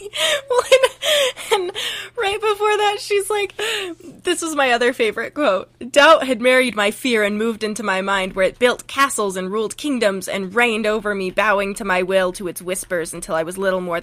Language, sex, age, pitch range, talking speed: English, female, 20-39, 215-315 Hz, 195 wpm